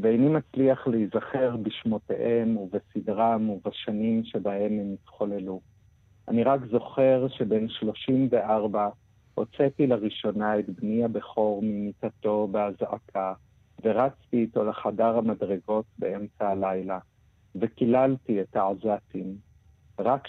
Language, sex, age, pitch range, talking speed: Hebrew, male, 50-69, 100-115 Hz, 95 wpm